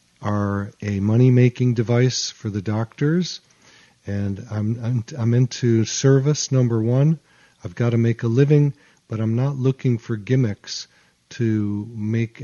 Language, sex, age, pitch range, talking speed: English, male, 40-59, 105-125 Hz, 140 wpm